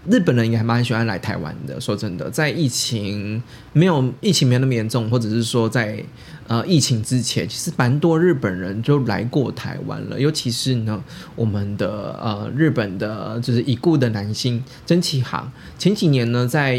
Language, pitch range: Chinese, 115-140 Hz